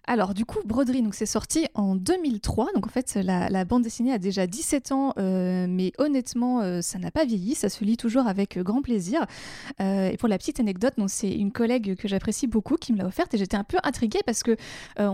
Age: 20-39